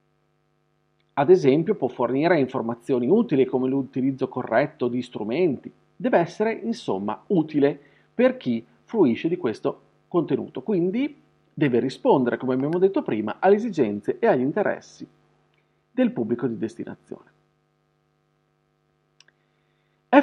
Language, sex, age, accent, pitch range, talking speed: Italian, male, 40-59, native, 125-175 Hz, 115 wpm